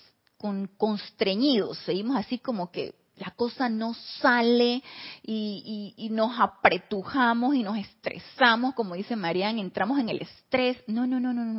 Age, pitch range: 30-49, 175-240 Hz